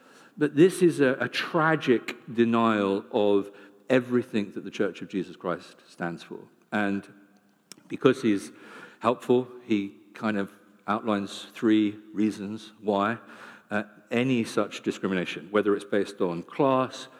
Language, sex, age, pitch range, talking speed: English, male, 50-69, 105-140 Hz, 130 wpm